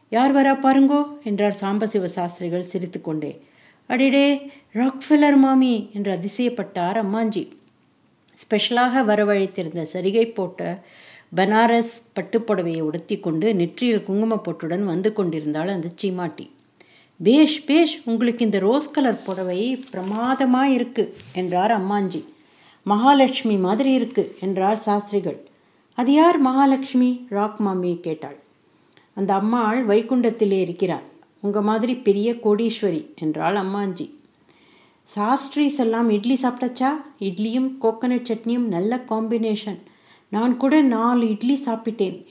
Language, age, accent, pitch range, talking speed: Tamil, 50-69, native, 195-255 Hz, 110 wpm